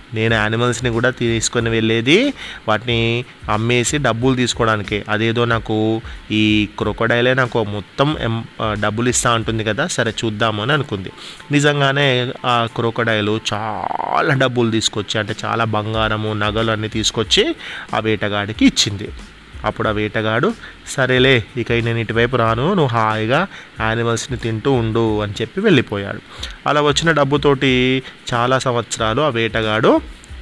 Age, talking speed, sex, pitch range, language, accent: 30-49, 120 wpm, male, 110-130 Hz, Telugu, native